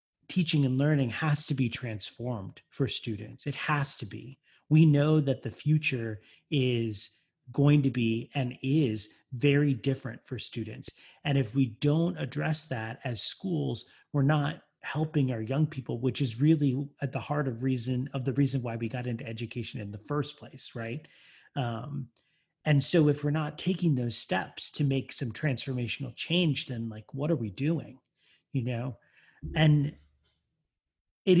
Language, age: English, 30-49